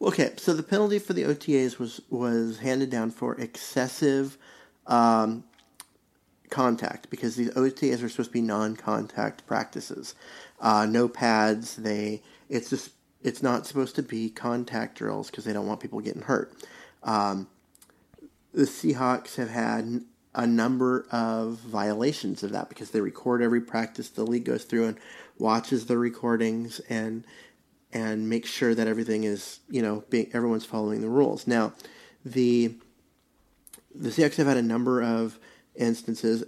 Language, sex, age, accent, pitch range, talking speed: English, male, 30-49, American, 115-125 Hz, 150 wpm